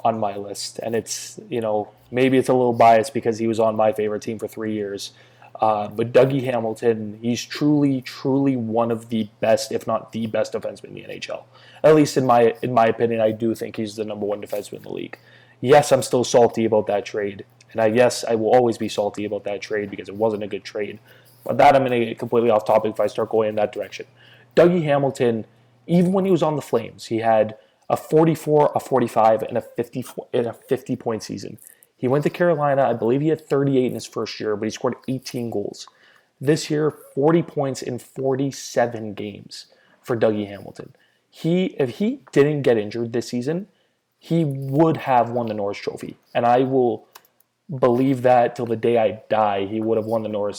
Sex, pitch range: male, 110-135 Hz